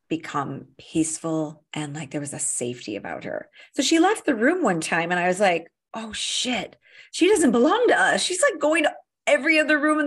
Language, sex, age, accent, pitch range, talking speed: English, female, 30-49, American, 160-245 Hz, 215 wpm